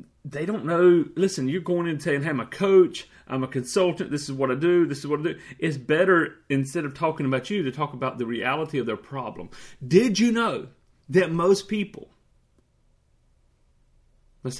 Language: English